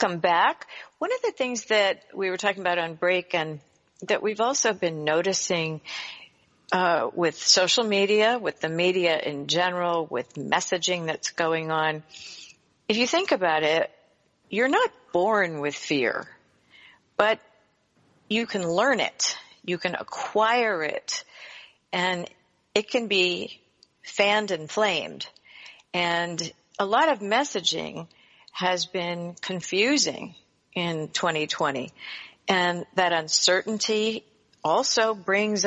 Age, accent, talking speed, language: 50-69, American, 125 wpm, English